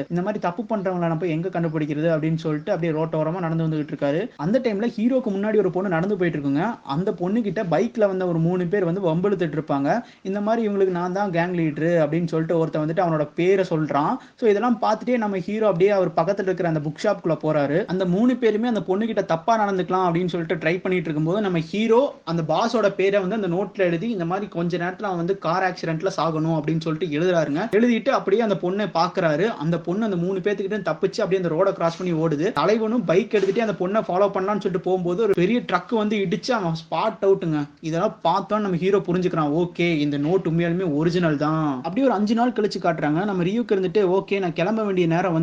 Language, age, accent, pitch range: Tamil, 20-39, native, 165-210 Hz